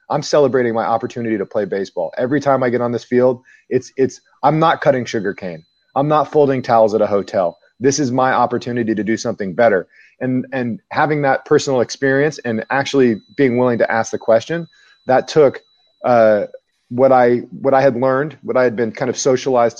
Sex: male